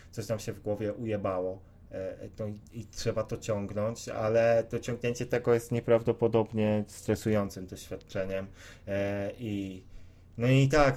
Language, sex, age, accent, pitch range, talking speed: Polish, male, 30-49, native, 100-115 Hz, 135 wpm